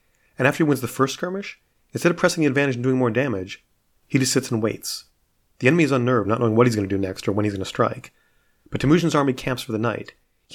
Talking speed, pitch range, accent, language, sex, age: 265 wpm, 110-135 Hz, American, English, male, 40-59